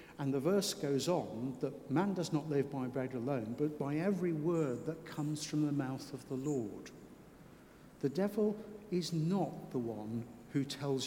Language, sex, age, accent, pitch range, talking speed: English, male, 60-79, British, 135-170 Hz, 180 wpm